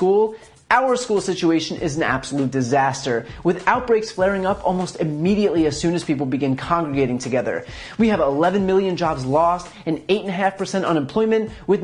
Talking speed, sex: 155 wpm, male